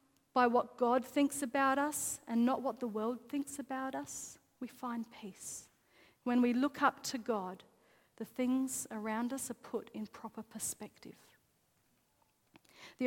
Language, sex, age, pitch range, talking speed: English, female, 40-59, 225-280 Hz, 150 wpm